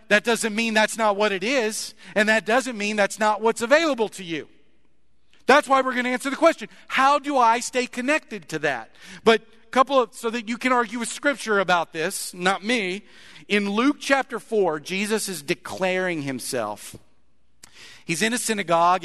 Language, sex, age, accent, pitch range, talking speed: English, male, 40-59, American, 185-235 Hz, 190 wpm